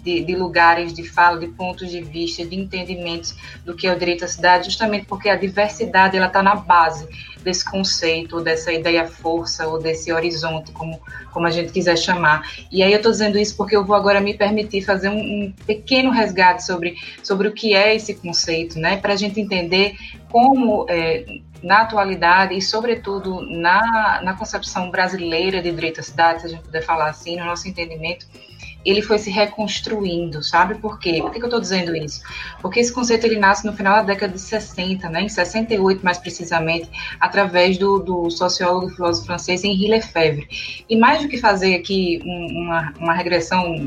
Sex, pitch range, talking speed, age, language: female, 170-205 Hz, 185 wpm, 20-39, Portuguese